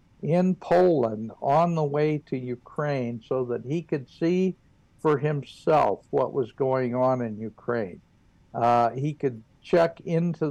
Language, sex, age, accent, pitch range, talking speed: English, male, 60-79, American, 125-155 Hz, 145 wpm